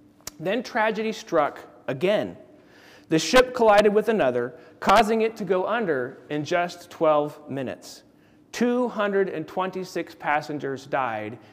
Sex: male